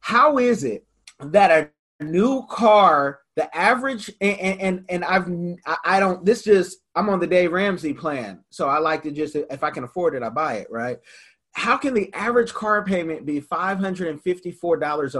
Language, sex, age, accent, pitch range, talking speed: English, male, 30-49, American, 165-230 Hz, 180 wpm